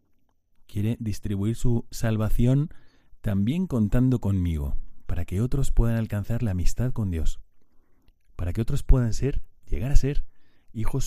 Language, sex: Spanish, male